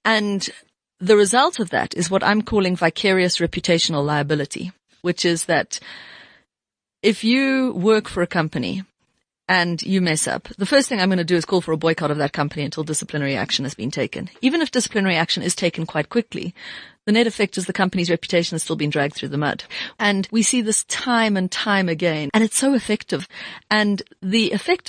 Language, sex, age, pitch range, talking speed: English, female, 30-49, 160-210 Hz, 200 wpm